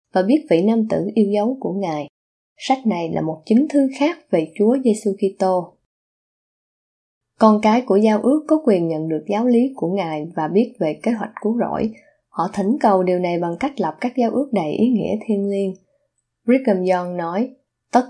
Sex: female